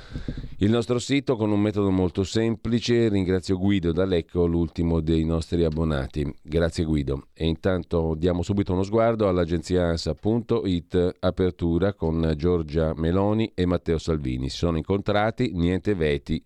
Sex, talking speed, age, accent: male, 135 wpm, 40-59, native